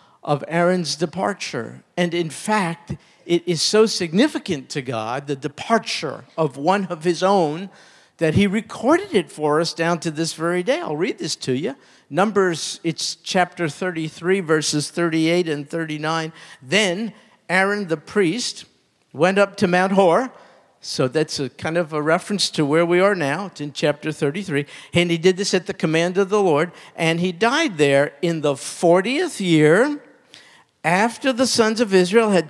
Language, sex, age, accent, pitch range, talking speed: English, male, 50-69, American, 150-200 Hz, 170 wpm